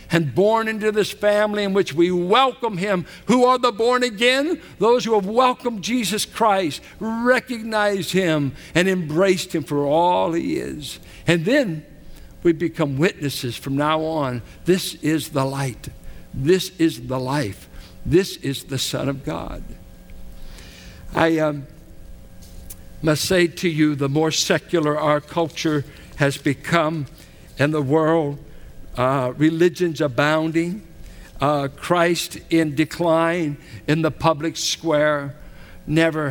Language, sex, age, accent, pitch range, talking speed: English, male, 60-79, American, 140-185 Hz, 130 wpm